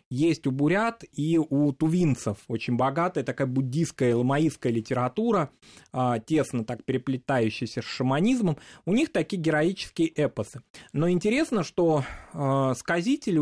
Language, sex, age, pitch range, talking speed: Russian, male, 20-39, 120-160 Hz, 120 wpm